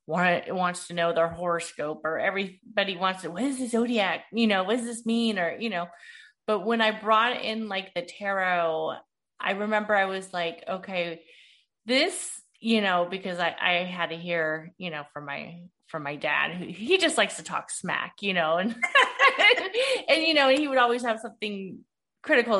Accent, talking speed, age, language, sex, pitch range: American, 195 wpm, 30-49, English, female, 180-245 Hz